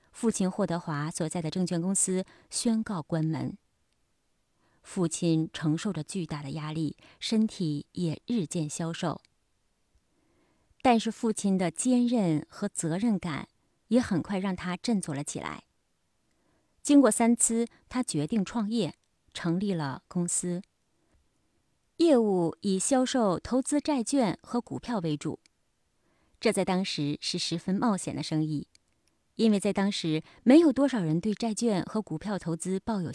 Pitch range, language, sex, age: 165-230 Hz, Chinese, female, 30-49